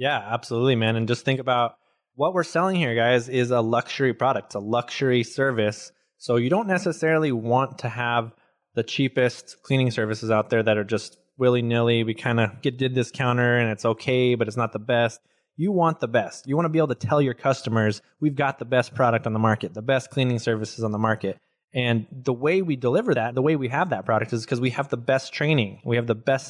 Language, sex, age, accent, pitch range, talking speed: English, male, 20-39, American, 115-140 Hz, 235 wpm